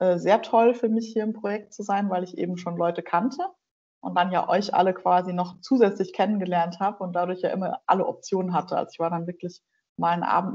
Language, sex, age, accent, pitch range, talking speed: German, female, 20-39, German, 185-220 Hz, 230 wpm